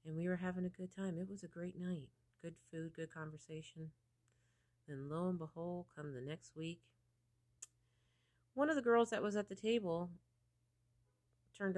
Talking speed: 175 wpm